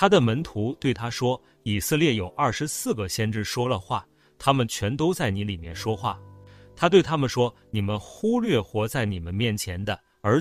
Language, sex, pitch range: Chinese, male, 100-150 Hz